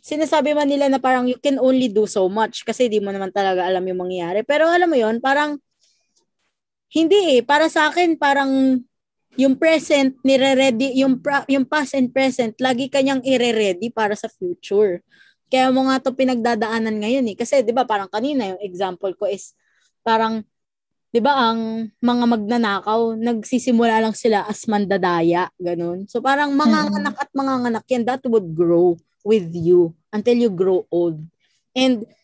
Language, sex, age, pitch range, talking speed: Filipino, female, 20-39, 210-275 Hz, 170 wpm